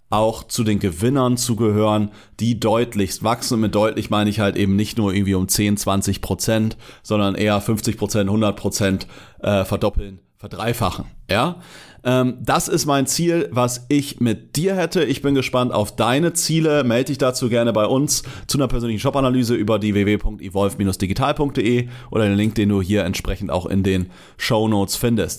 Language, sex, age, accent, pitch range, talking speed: German, male, 30-49, German, 100-120 Hz, 170 wpm